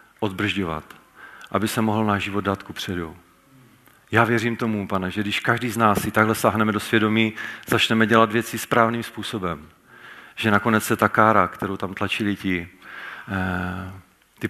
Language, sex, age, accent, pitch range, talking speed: Czech, male, 40-59, native, 100-115 Hz, 155 wpm